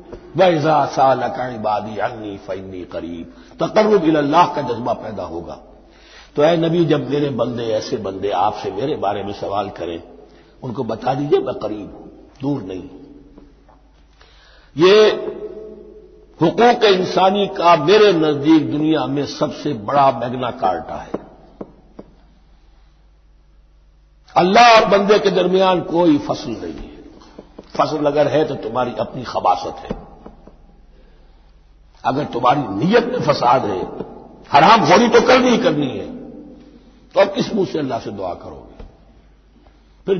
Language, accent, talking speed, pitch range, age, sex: Hindi, native, 130 wpm, 120-195 Hz, 60-79, male